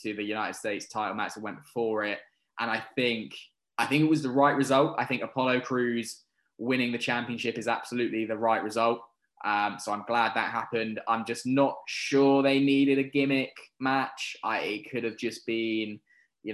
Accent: British